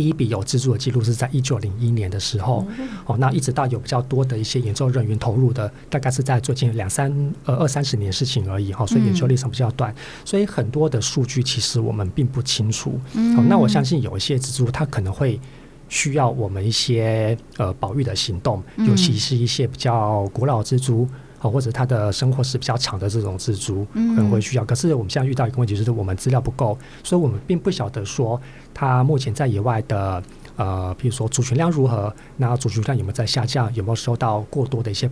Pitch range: 110-135 Hz